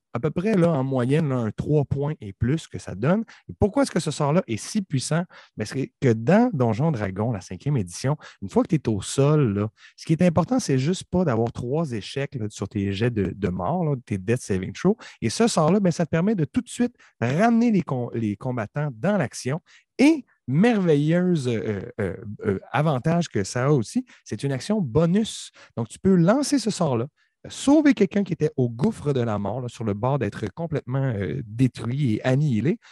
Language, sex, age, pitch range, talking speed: French, male, 30-49, 110-170 Hz, 215 wpm